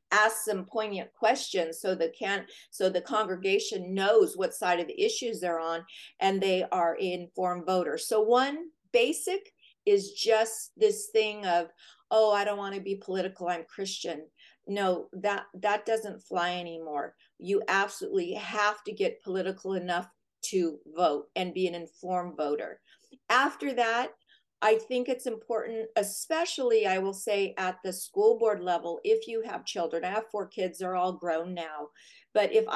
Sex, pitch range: female, 185-240 Hz